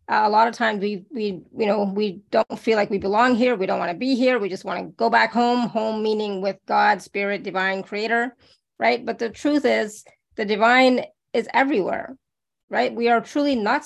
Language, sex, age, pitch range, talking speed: English, female, 30-49, 195-235 Hz, 210 wpm